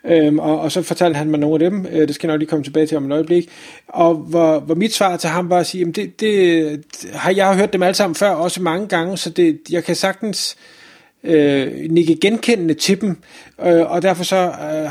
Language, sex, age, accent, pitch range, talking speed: Danish, male, 30-49, native, 155-190 Hz, 240 wpm